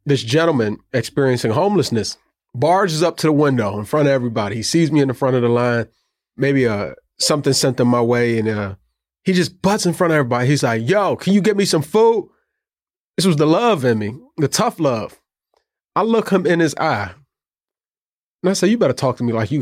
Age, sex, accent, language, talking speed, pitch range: 30-49, male, American, English, 220 wpm, 125-170 Hz